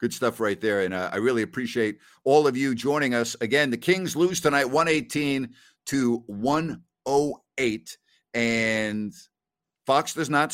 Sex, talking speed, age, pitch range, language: male, 150 wpm, 50-69, 120-175 Hz, English